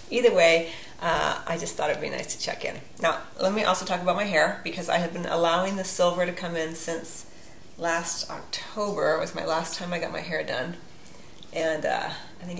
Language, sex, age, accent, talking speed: English, female, 40-59, American, 225 wpm